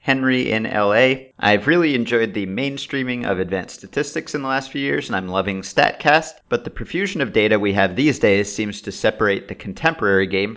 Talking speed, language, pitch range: 200 wpm, English, 100-125 Hz